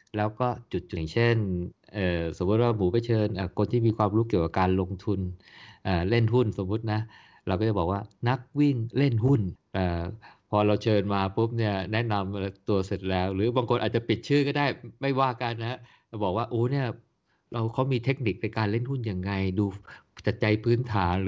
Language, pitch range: Thai, 100-120 Hz